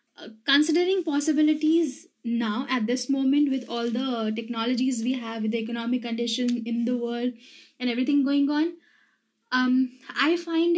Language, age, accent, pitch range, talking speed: Malayalam, 10-29, native, 225-270 Hz, 150 wpm